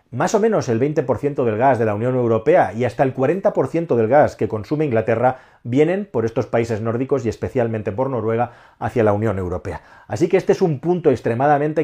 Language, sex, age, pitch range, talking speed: Spanish, male, 40-59, 115-150 Hz, 205 wpm